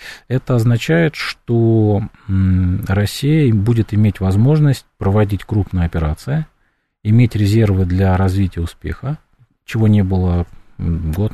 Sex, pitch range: male, 90-110 Hz